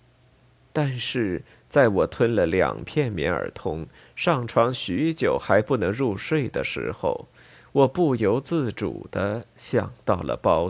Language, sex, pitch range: Chinese, male, 105-125 Hz